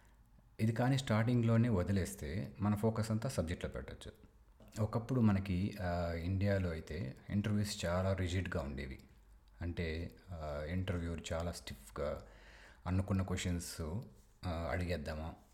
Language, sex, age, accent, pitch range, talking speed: Telugu, male, 30-49, native, 80-100 Hz, 95 wpm